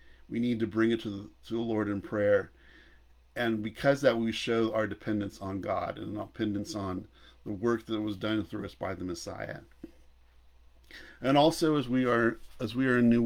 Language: English